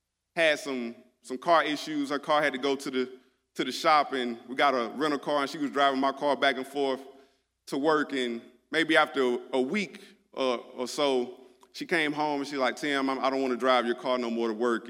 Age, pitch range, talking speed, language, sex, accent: 30-49, 130-195 Hz, 230 wpm, English, male, American